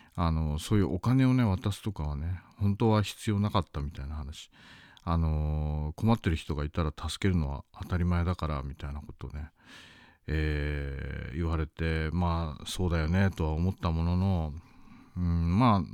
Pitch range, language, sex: 80-105 Hz, Japanese, male